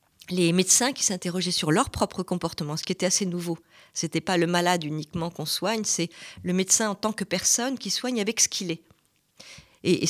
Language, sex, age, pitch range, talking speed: French, female, 40-59, 175-225 Hz, 215 wpm